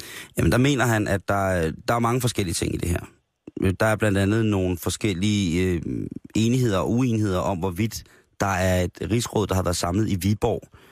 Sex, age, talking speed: male, 30-49, 200 wpm